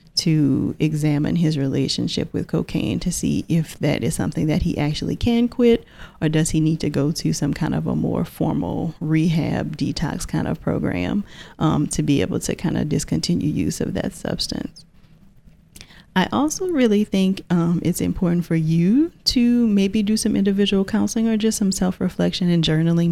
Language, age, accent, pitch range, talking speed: English, 30-49, American, 150-180 Hz, 175 wpm